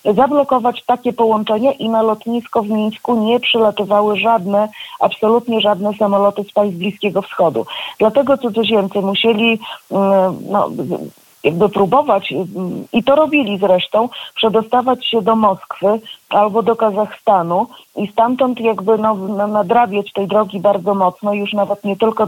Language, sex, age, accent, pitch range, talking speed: Polish, female, 30-49, native, 205-235 Hz, 130 wpm